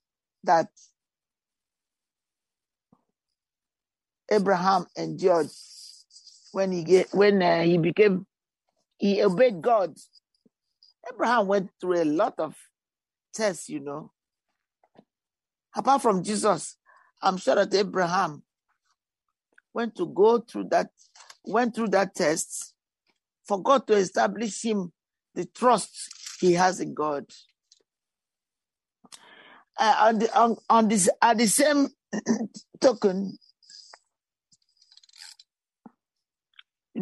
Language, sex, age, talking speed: English, male, 50-69, 95 wpm